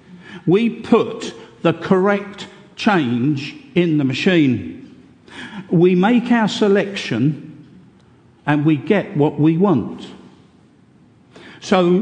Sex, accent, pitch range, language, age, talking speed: male, British, 160-235 Hz, English, 50-69, 95 wpm